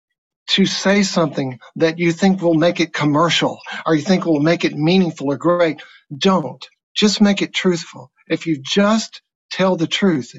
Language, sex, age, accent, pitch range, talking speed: English, male, 60-79, American, 155-200 Hz, 175 wpm